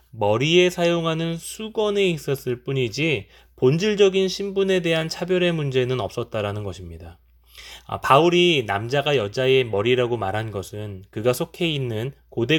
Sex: male